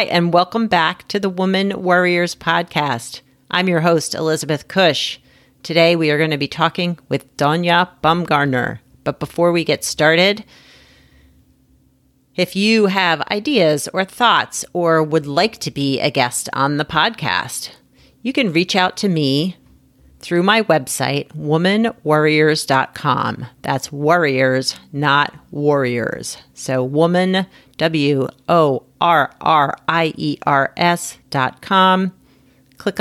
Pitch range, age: 140-175 Hz, 40-59